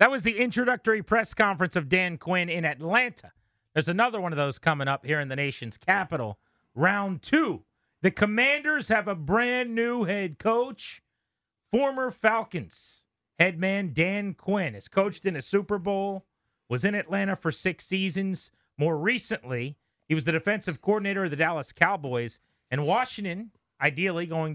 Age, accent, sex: 30-49, American, male